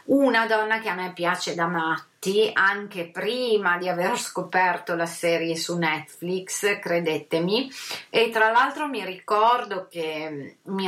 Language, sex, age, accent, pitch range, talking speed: Italian, female, 30-49, native, 165-205 Hz, 140 wpm